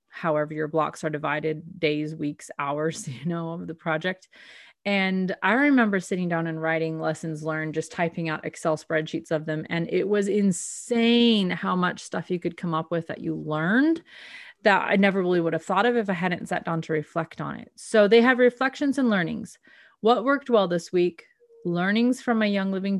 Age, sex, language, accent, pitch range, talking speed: 30-49, female, English, American, 165-220 Hz, 200 wpm